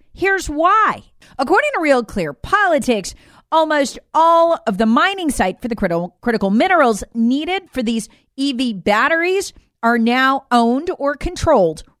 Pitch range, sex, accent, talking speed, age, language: 200-310 Hz, female, American, 135 wpm, 40-59, English